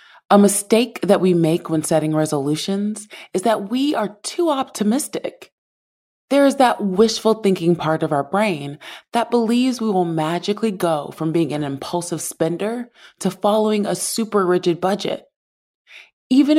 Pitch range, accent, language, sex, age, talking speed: 170-220 Hz, American, English, female, 20-39, 150 wpm